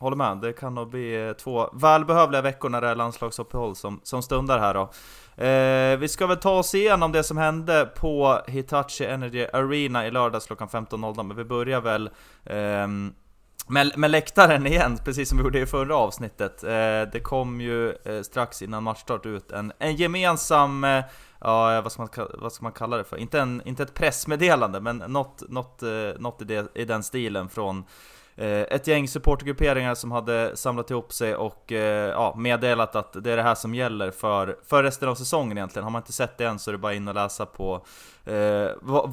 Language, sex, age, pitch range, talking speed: Swedish, male, 20-39, 110-135 Hz, 200 wpm